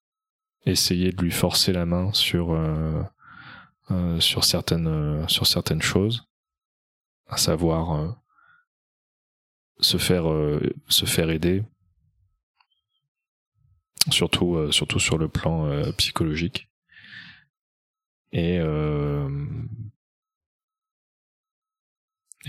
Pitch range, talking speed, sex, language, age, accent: 80-125 Hz, 90 wpm, male, French, 20-39, French